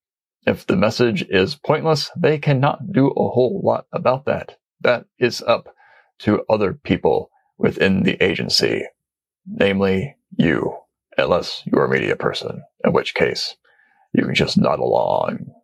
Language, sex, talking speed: English, male, 145 wpm